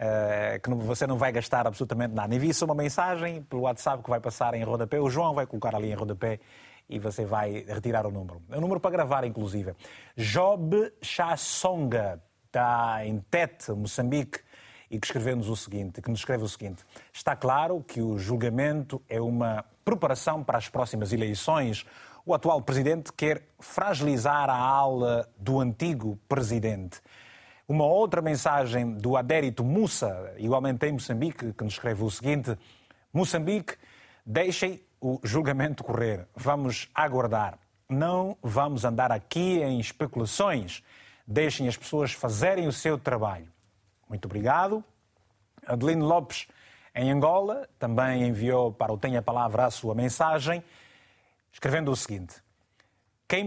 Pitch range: 110-150 Hz